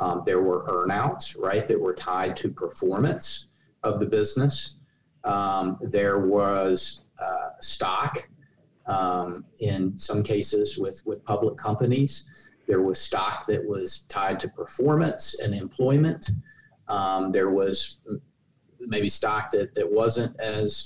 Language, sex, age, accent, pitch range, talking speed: English, male, 40-59, American, 95-120 Hz, 130 wpm